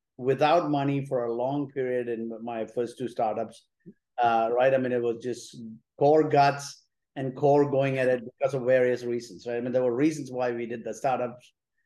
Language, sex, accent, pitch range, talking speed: English, male, Indian, 120-145 Hz, 200 wpm